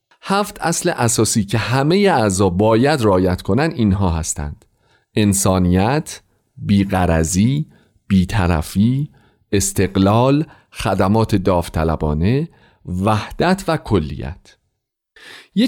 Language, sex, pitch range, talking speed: Persian, male, 95-145 Hz, 80 wpm